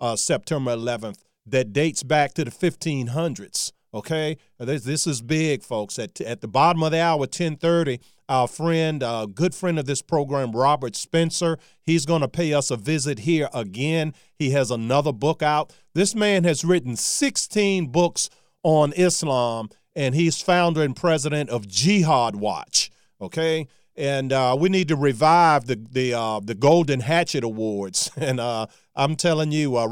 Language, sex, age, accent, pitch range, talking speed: English, male, 40-59, American, 125-165 Hz, 170 wpm